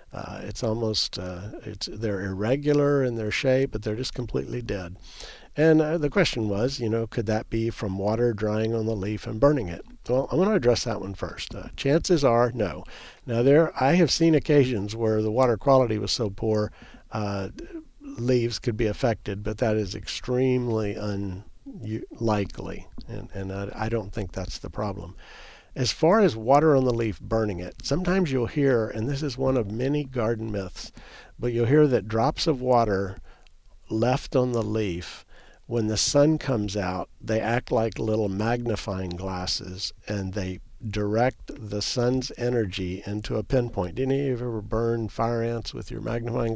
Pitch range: 105-125 Hz